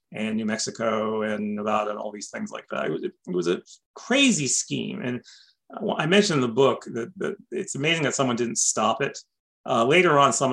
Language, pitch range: English, 115-145 Hz